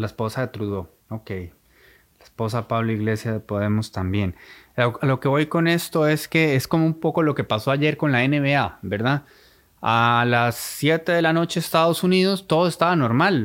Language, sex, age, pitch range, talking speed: Spanish, male, 20-39, 110-150 Hz, 185 wpm